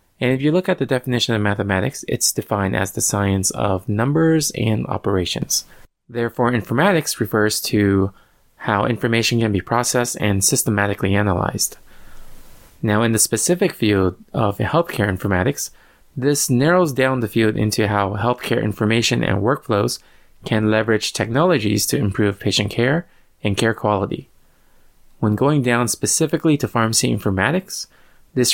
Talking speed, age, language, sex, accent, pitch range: 140 wpm, 20-39, English, male, American, 105-130 Hz